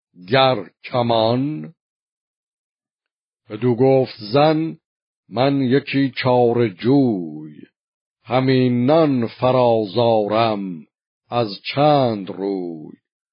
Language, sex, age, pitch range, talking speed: Persian, male, 50-69, 115-145 Hz, 65 wpm